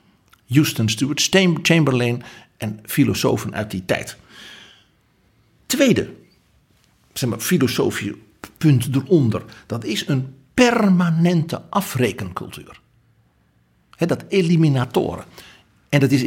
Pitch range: 115-170 Hz